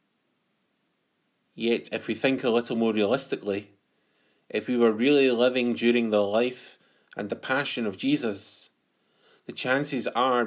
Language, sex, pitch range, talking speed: English, male, 105-120 Hz, 140 wpm